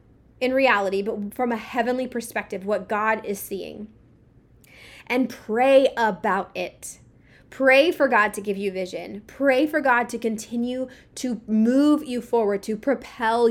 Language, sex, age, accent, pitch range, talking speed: English, female, 20-39, American, 200-260 Hz, 145 wpm